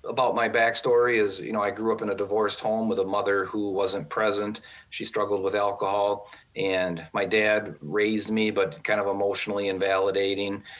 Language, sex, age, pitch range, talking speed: English, male, 40-59, 95-120 Hz, 185 wpm